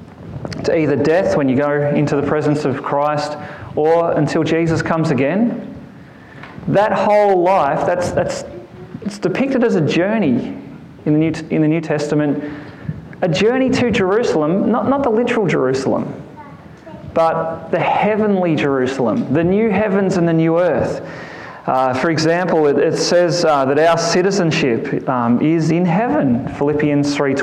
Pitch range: 150-215 Hz